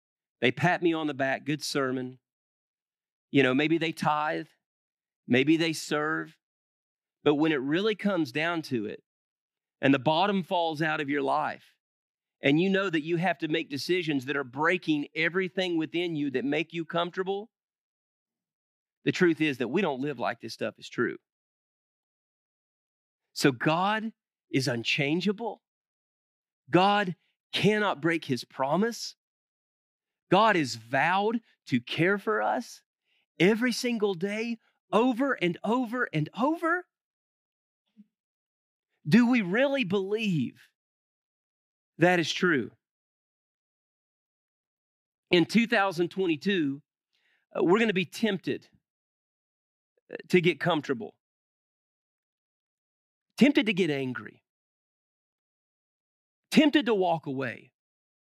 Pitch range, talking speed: 140-205 Hz, 115 wpm